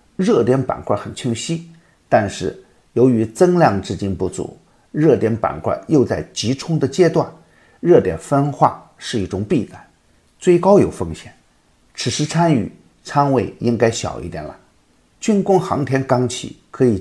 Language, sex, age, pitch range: Chinese, male, 50-69, 105-145 Hz